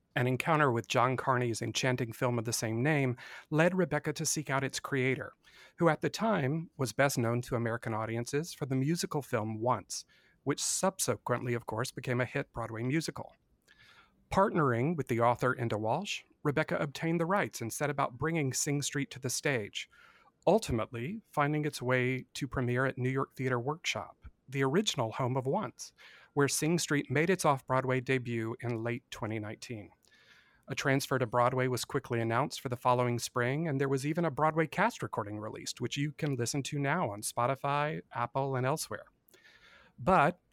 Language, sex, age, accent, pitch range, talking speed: English, male, 40-59, American, 120-150 Hz, 175 wpm